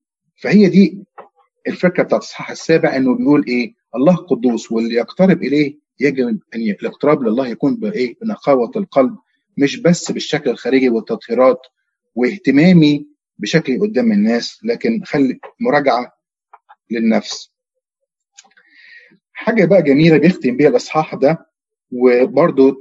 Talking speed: 115 wpm